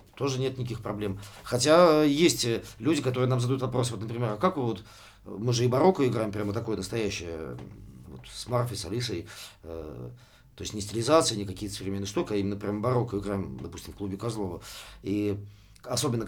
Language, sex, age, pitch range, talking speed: Russian, male, 50-69, 100-125 Hz, 180 wpm